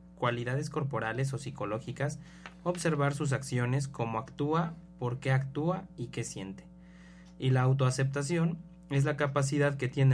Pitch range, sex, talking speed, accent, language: 125-165 Hz, male, 135 wpm, Mexican, Spanish